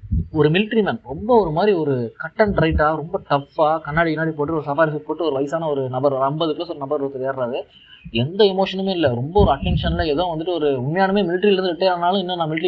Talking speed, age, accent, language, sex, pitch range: 210 wpm, 20-39, native, Tamil, male, 145-190 Hz